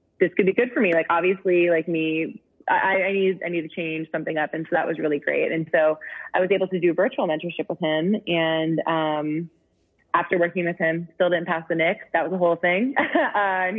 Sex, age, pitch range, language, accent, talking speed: female, 20-39, 160-190 Hz, English, American, 240 wpm